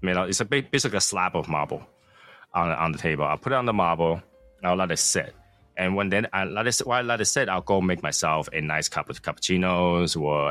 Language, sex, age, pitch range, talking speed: English, male, 20-39, 80-105 Hz, 255 wpm